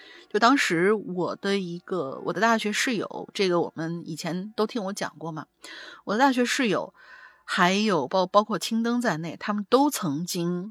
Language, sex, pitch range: Chinese, female, 165-235 Hz